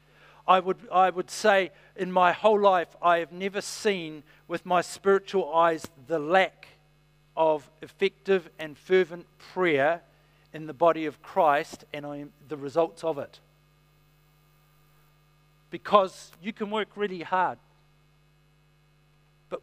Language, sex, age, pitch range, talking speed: English, male, 50-69, 150-185 Hz, 130 wpm